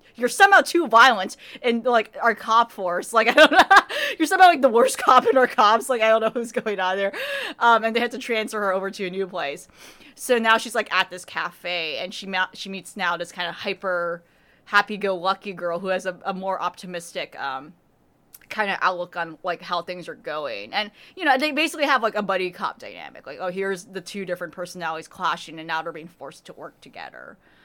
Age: 20-39